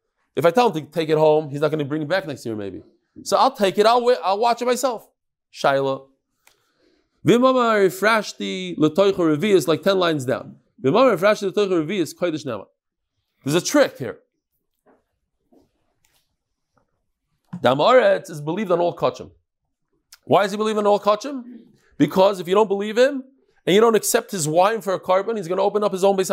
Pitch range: 155-235 Hz